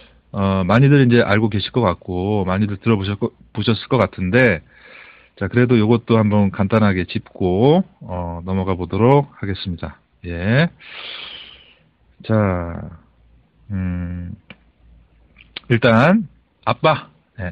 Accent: native